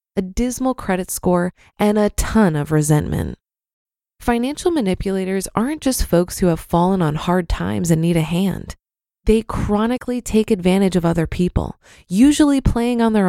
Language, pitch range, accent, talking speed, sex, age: English, 180-235 Hz, American, 160 wpm, female, 20-39